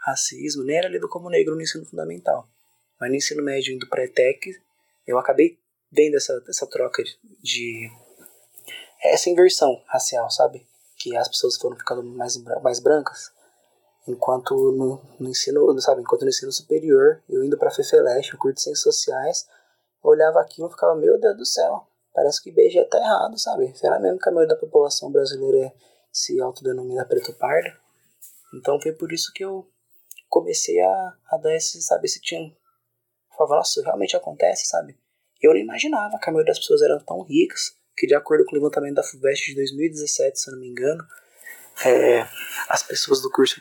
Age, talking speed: 20-39, 175 wpm